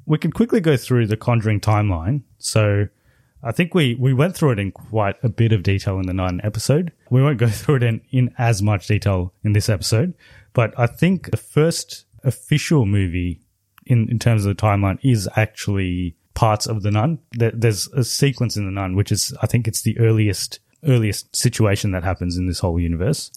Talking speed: 205 wpm